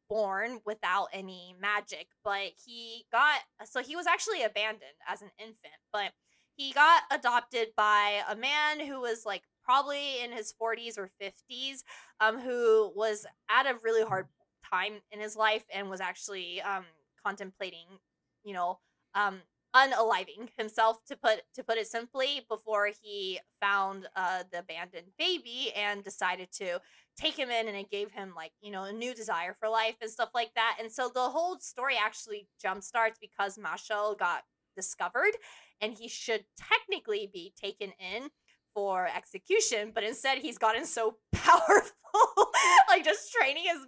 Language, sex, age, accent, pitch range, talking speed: English, female, 20-39, American, 205-295 Hz, 160 wpm